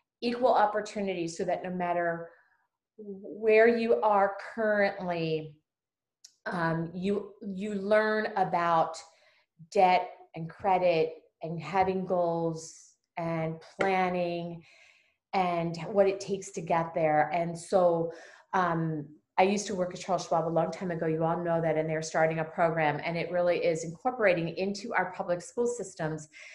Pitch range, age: 165-200 Hz, 30-49